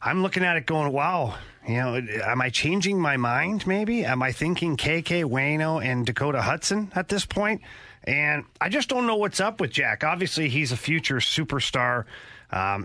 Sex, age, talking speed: male, 30-49, 185 wpm